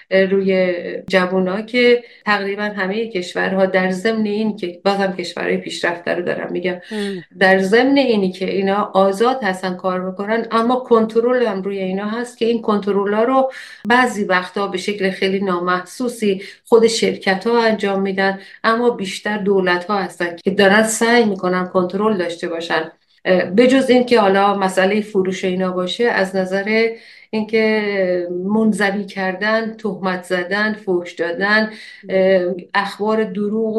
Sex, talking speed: female, 135 wpm